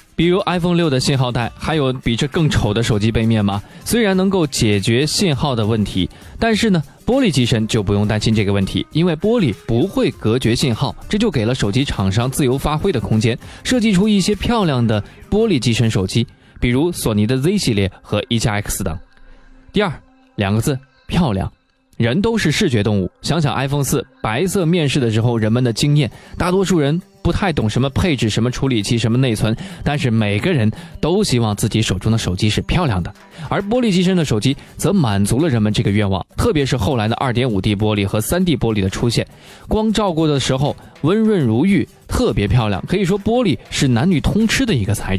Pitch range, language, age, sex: 110-180 Hz, Chinese, 20-39, male